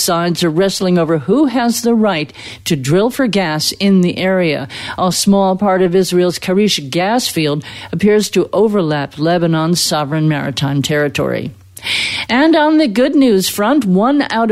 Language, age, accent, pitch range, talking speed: English, 50-69, American, 155-225 Hz, 155 wpm